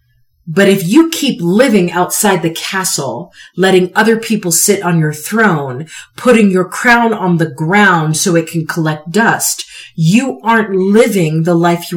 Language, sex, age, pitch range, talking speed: English, female, 40-59, 155-205 Hz, 160 wpm